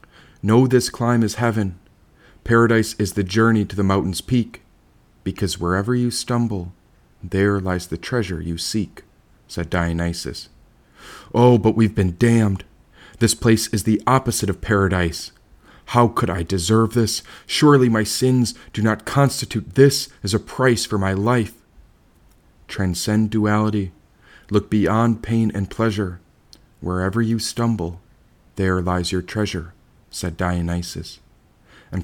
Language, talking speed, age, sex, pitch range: English, 135 wpm, 40-59, male, 95-115 Hz